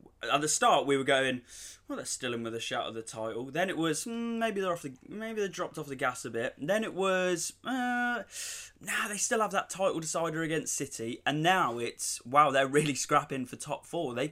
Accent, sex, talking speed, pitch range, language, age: British, male, 240 wpm, 115-155 Hz, English, 20-39